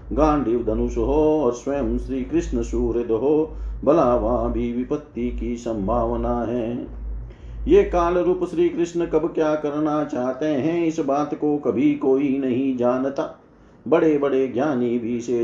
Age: 50-69